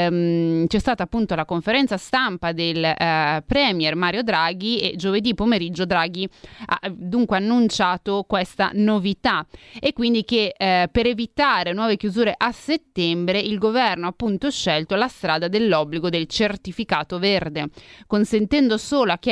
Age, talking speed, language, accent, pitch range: 30-49, 140 wpm, Italian, native, 175-230 Hz